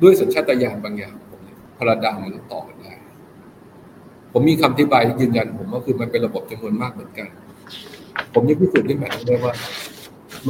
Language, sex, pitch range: Thai, male, 115-145 Hz